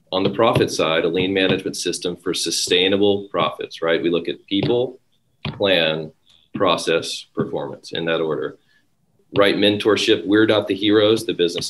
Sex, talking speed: male, 155 wpm